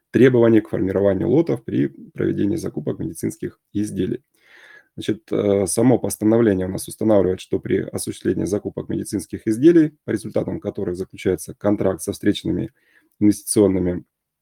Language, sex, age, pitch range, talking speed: Russian, male, 20-39, 100-135 Hz, 120 wpm